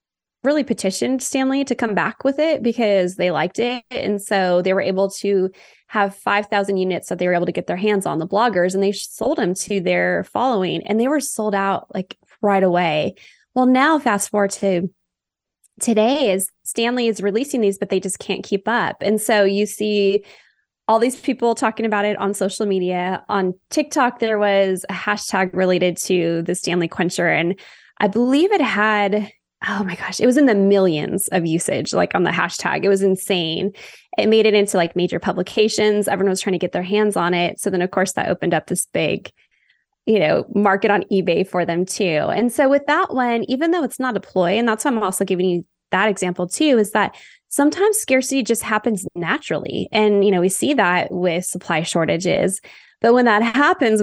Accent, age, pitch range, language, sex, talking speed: American, 20-39, 185-230 Hz, English, female, 205 wpm